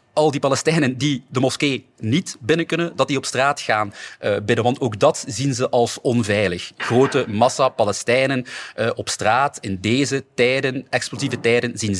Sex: male